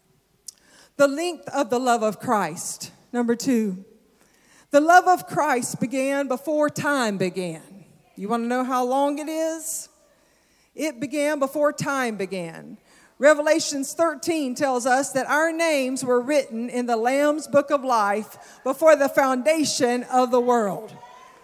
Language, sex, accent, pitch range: English, female, American, 260-345 Hz